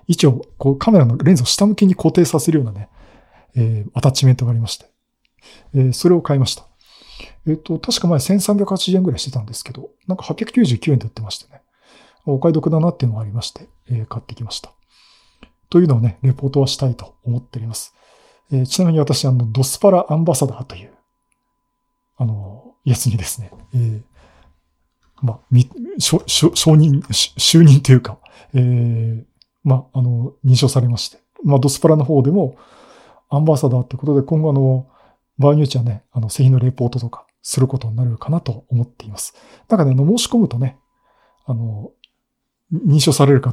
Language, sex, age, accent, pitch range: Japanese, male, 40-59, native, 120-145 Hz